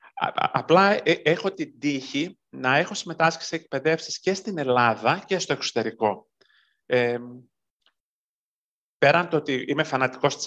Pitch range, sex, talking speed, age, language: 120-150 Hz, male, 125 wpm, 40-59, Greek